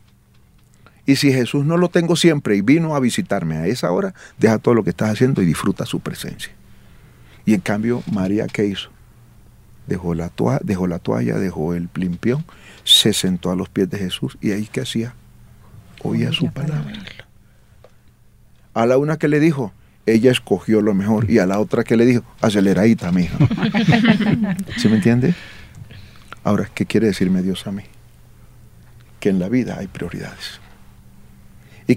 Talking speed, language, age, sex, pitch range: 170 wpm, Spanish, 40-59, male, 105-145 Hz